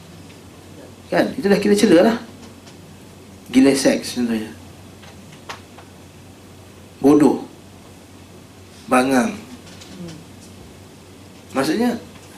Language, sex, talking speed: Malay, male, 50 wpm